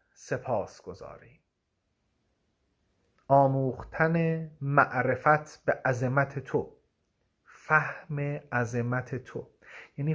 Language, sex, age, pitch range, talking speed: Persian, male, 40-59, 115-155 Hz, 65 wpm